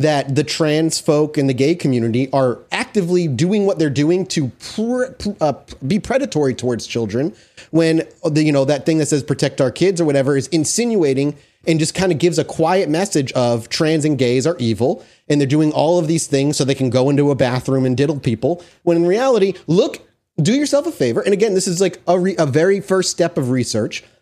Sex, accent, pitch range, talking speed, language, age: male, American, 135-185 Hz, 220 wpm, English, 30-49